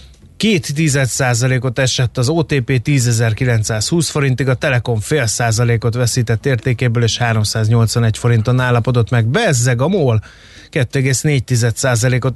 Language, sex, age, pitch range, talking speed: Hungarian, male, 30-49, 120-140 Hz, 105 wpm